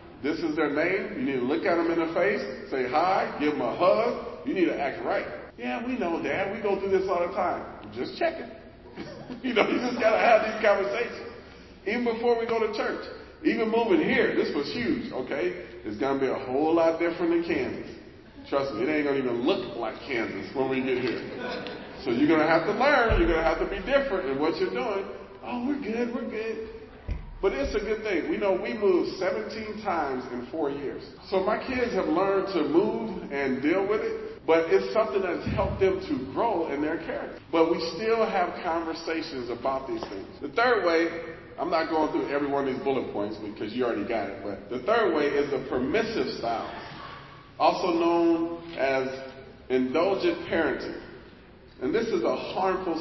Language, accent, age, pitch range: English, American, 40-59, 160-235 Hz